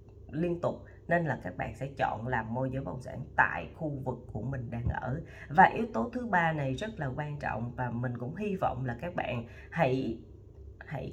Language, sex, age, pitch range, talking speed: Vietnamese, female, 20-39, 125-170 Hz, 215 wpm